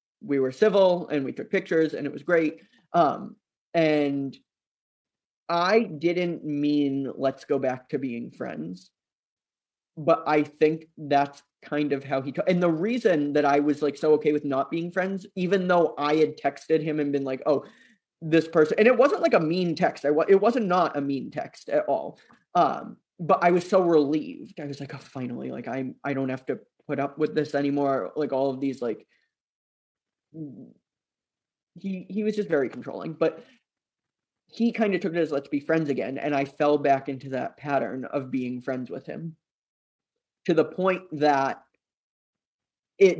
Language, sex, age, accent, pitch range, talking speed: English, male, 20-39, American, 140-165 Hz, 185 wpm